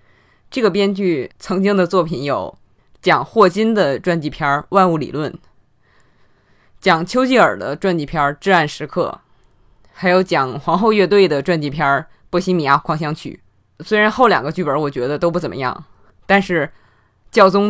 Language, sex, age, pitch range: Chinese, female, 20-39, 110-185 Hz